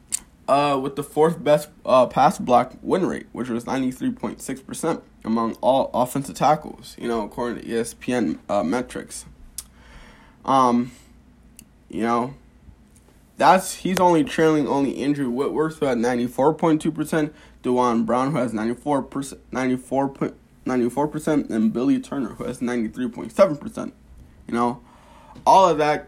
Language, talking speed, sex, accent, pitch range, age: English, 150 wpm, male, American, 120-145 Hz, 20-39